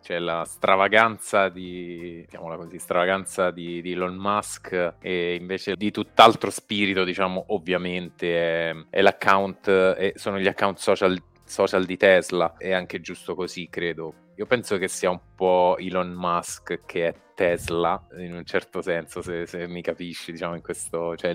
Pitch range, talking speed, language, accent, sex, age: 85-95 Hz, 155 wpm, Italian, native, male, 20-39